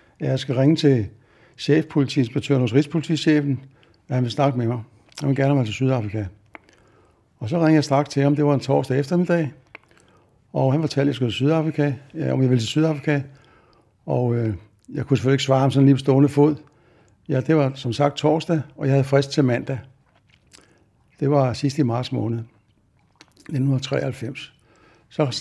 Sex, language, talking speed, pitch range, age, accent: male, Danish, 185 wpm, 125-150 Hz, 60-79, native